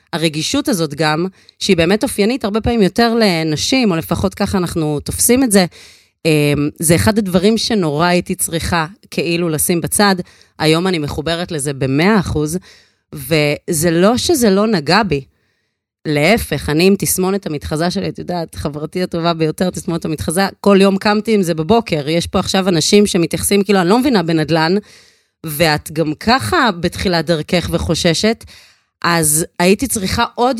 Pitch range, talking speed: 150-195 Hz, 150 wpm